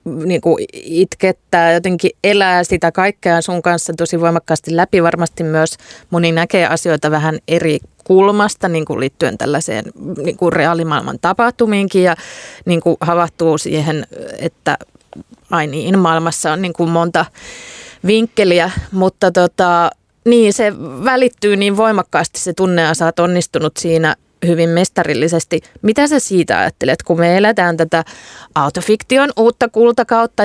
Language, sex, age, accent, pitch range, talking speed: Finnish, female, 20-39, native, 165-200 Hz, 110 wpm